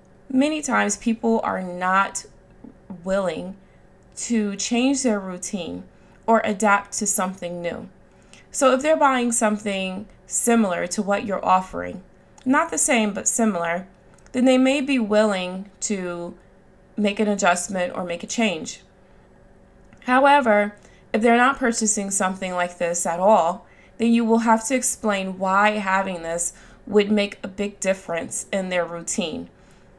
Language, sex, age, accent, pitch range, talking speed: English, female, 20-39, American, 180-225 Hz, 140 wpm